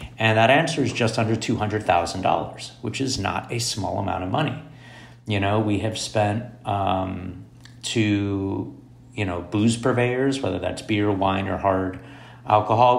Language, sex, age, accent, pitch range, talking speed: English, male, 30-49, American, 95-120 Hz, 155 wpm